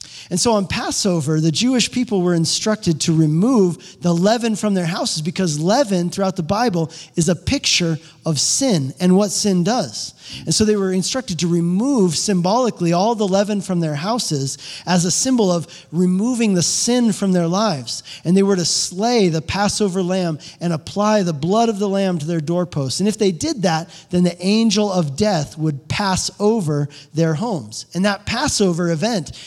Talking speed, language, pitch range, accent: 185 wpm, English, 160-210 Hz, American